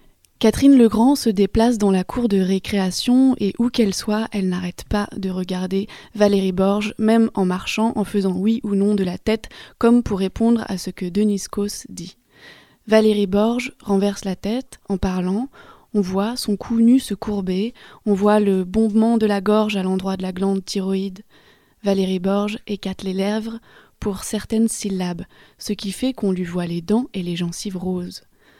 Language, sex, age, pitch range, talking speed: French, female, 20-39, 195-220 Hz, 185 wpm